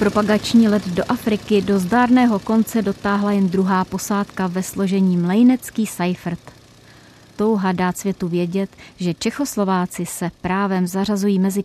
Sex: female